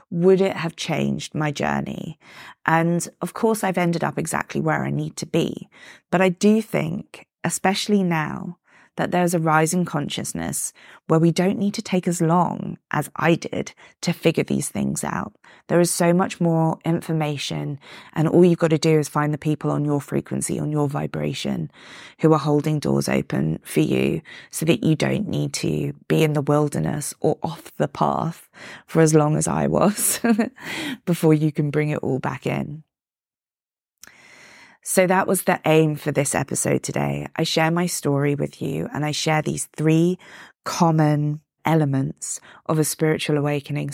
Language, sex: English, female